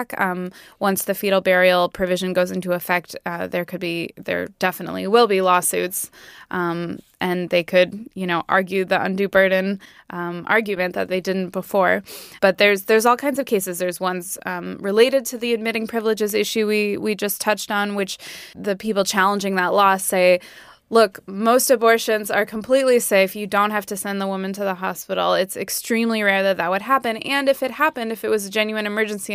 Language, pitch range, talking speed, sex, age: English, 185-220 Hz, 195 wpm, female, 20-39